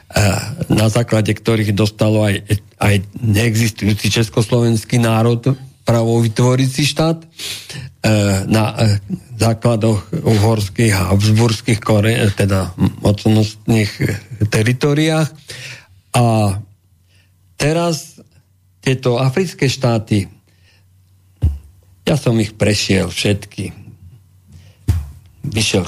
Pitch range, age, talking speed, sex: 100-125 Hz, 50-69, 70 wpm, male